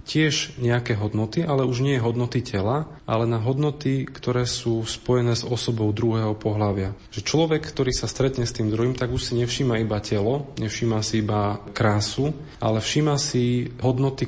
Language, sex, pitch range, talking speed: Slovak, male, 110-125 Hz, 165 wpm